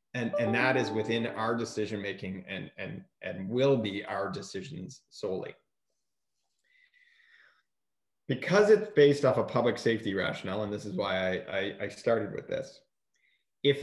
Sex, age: male, 30-49